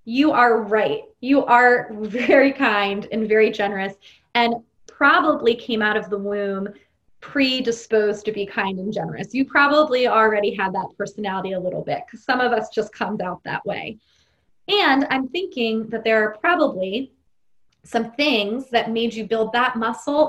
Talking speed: 165 wpm